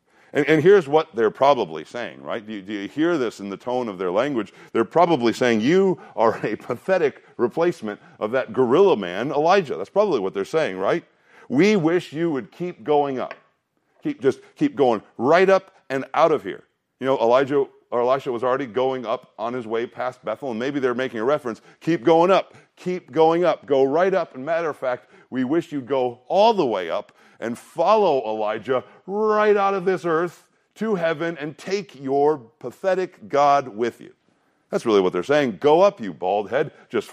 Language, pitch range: English, 125-180 Hz